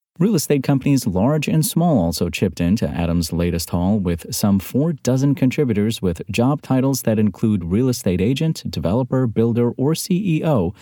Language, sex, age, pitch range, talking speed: English, male, 30-49, 90-120 Hz, 160 wpm